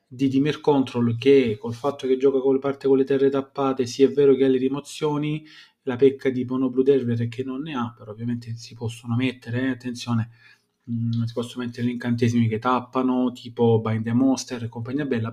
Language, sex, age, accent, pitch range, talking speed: Italian, male, 30-49, native, 120-140 Hz, 215 wpm